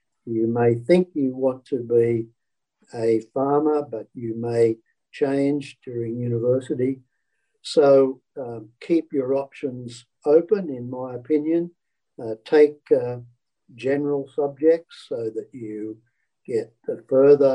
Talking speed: 115 wpm